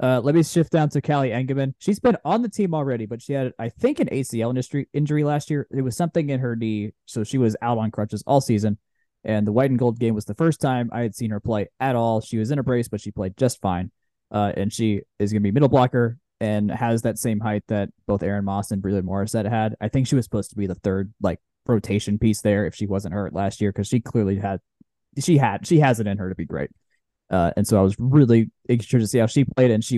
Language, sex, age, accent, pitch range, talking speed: English, male, 20-39, American, 105-130 Hz, 270 wpm